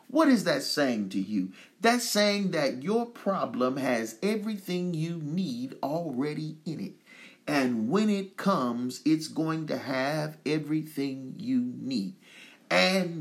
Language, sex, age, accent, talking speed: English, male, 40-59, American, 135 wpm